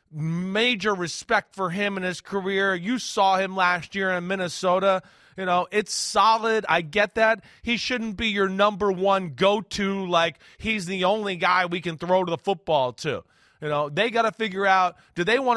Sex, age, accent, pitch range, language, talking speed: male, 30-49, American, 170-210 Hz, English, 195 wpm